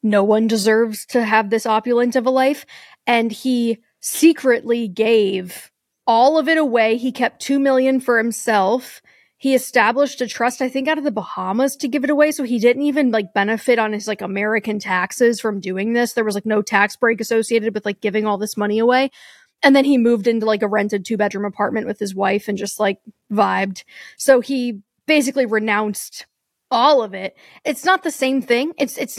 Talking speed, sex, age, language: 200 wpm, female, 20-39, English